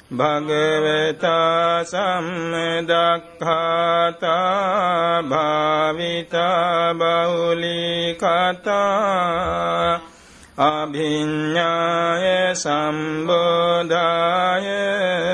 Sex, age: male, 60-79